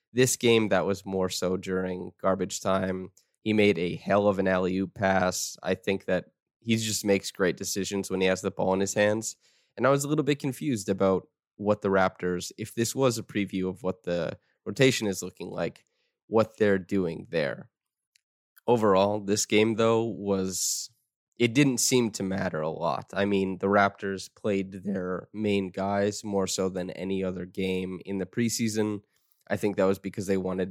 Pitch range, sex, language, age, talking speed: 95-105 Hz, male, English, 20-39, 190 wpm